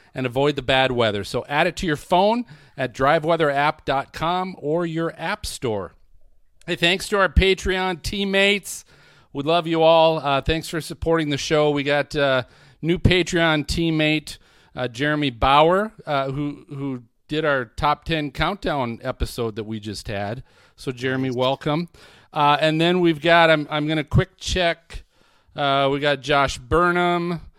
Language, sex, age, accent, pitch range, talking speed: English, male, 40-59, American, 135-170 Hz, 160 wpm